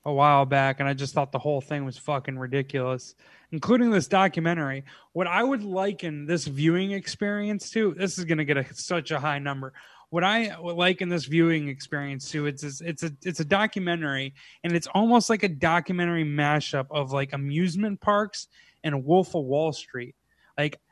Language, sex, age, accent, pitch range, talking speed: English, male, 20-39, American, 145-180 Hz, 185 wpm